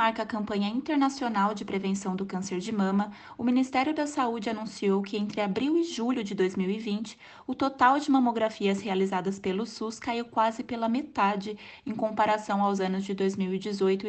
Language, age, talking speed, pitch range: English, 20-39, 165 wpm, 200-245 Hz